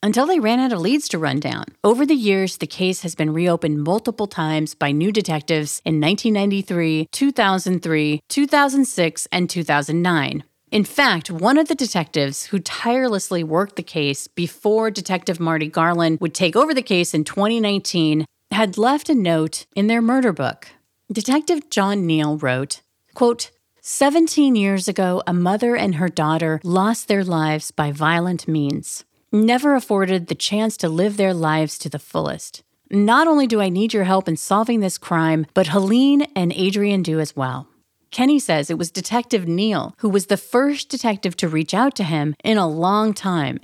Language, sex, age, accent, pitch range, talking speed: English, female, 40-59, American, 160-225 Hz, 175 wpm